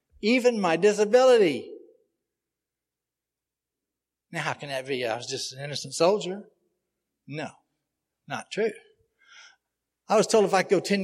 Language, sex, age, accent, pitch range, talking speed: English, male, 60-79, American, 155-210 Hz, 135 wpm